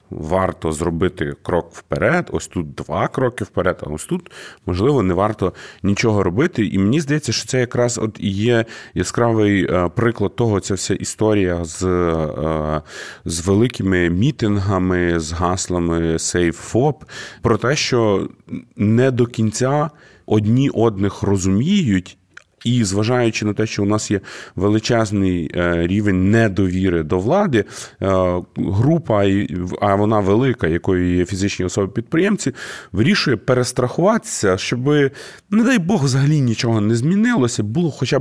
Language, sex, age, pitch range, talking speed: Ukrainian, male, 30-49, 90-125 Hz, 125 wpm